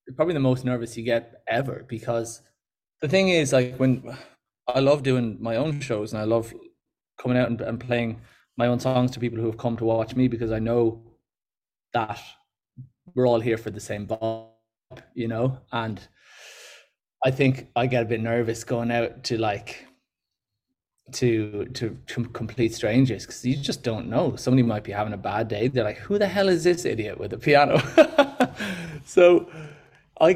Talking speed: 185 wpm